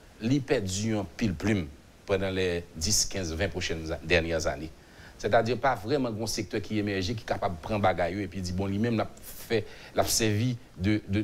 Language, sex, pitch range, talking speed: French, male, 90-125 Hz, 185 wpm